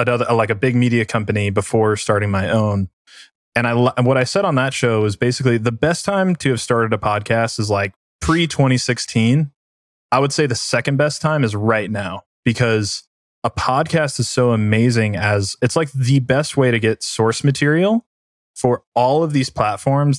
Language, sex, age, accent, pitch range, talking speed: English, male, 20-39, American, 105-130 Hz, 185 wpm